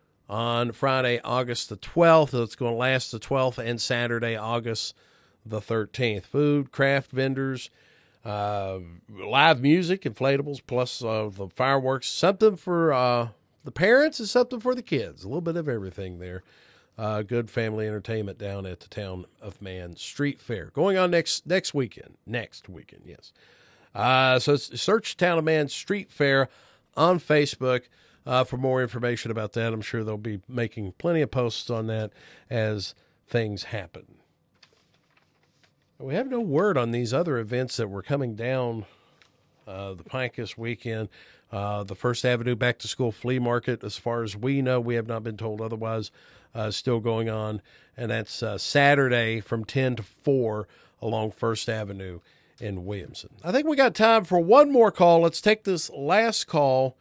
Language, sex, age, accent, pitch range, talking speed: English, male, 40-59, American, 110-140 Hz, 165 wpm